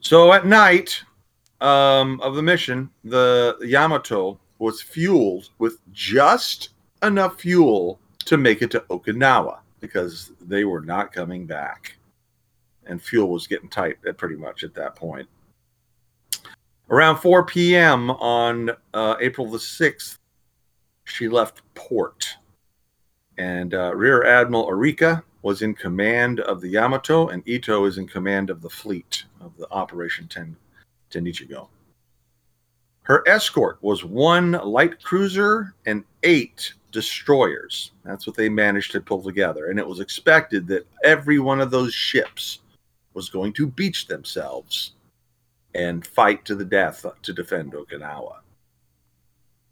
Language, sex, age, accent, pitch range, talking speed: English, male, 40-59, American, 95-135 Hz, 130 wpm